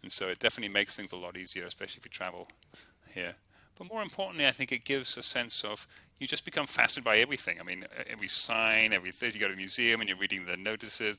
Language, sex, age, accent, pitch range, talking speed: English, male, 30-49, British, 95-120 Hz, 240 wpm